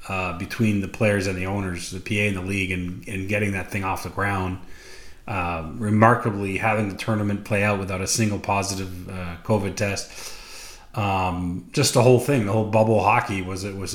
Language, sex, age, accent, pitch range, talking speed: English, male, 30-49, American, 95-115 Hz, 200 wpm